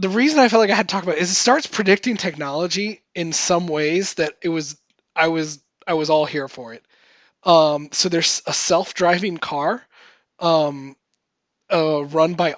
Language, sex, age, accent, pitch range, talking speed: English, male, 20-39, American, 150-180 Hz, 190 wpm